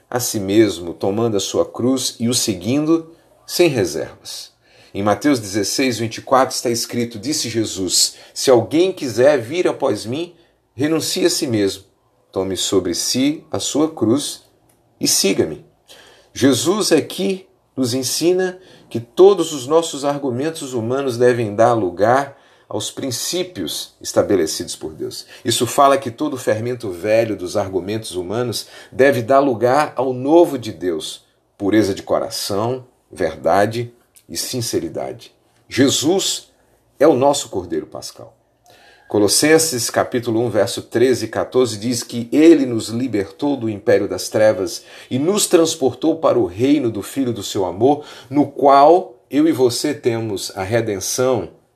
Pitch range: 115-155 Hz